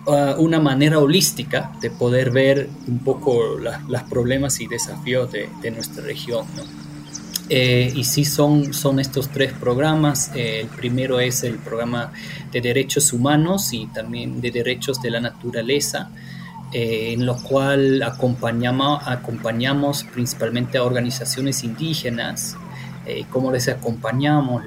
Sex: male